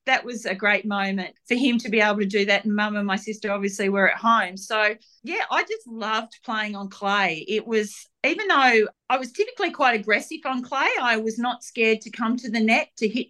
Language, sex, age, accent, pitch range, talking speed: English, female, 40-59, Australian, 210-245 Hz, 235 wpm